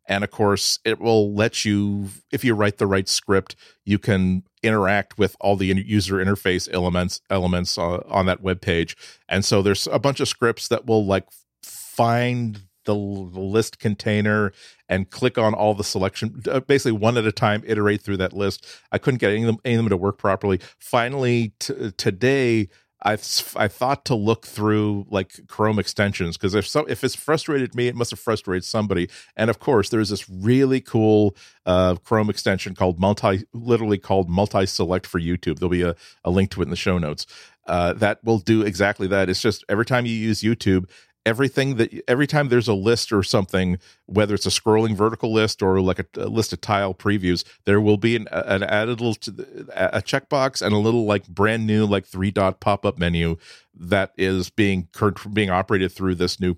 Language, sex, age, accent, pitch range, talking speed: English, male, 40-59, American, 95-110 Hz, 200 wpm